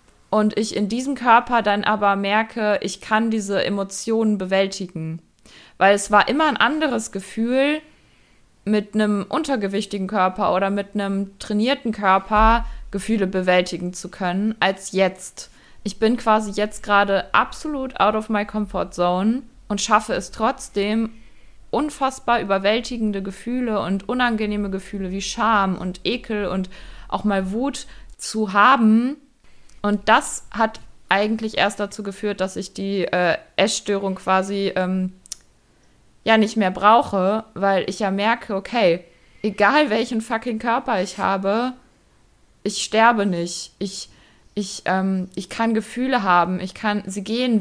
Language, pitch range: German, 190-225 Hz